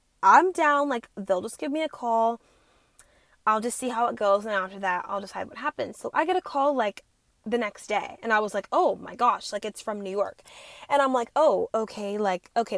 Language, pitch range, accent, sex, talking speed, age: English, 200-265 Hz, American, female, 235 wpm, 10-29